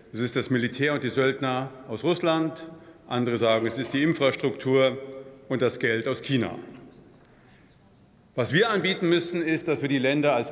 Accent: German